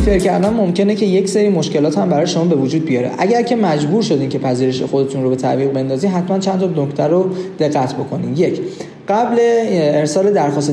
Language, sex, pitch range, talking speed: Persian, male, 140-185 Hz, 190 wpm